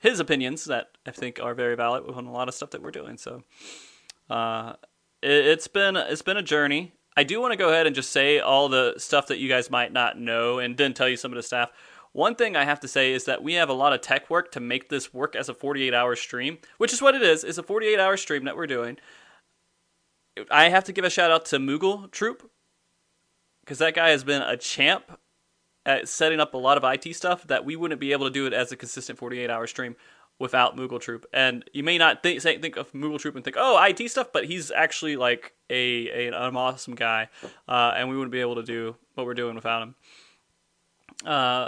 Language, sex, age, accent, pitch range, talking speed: English, male, 20-39, American, 125-160 Hz, 235 wpm